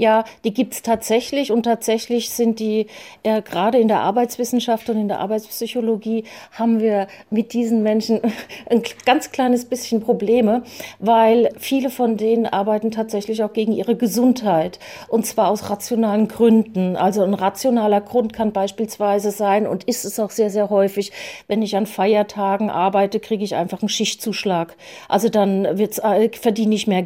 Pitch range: 210-235 Hz